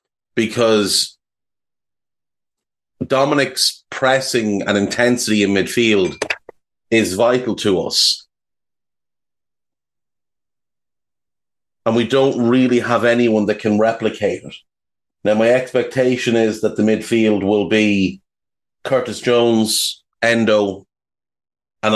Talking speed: 95 wpm